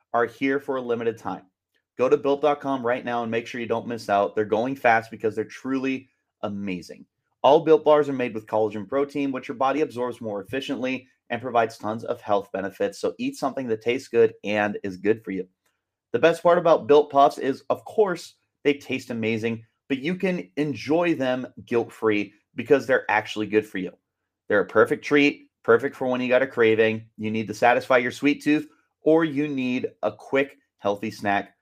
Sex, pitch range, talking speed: male, 110-145 Hz, 200 wpm